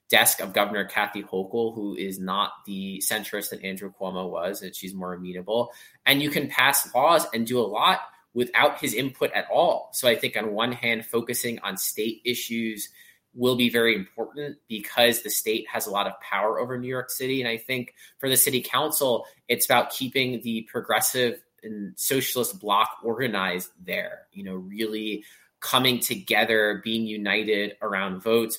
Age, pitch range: 20-39, 100-125 Hz